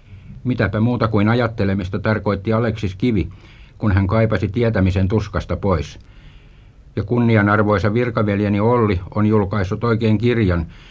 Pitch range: 100-115 Hz